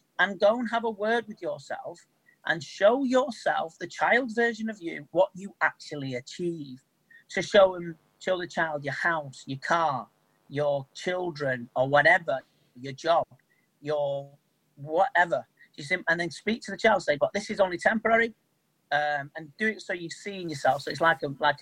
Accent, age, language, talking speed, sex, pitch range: British, 40-59, English, 175 wpm, male, 155-225 Hz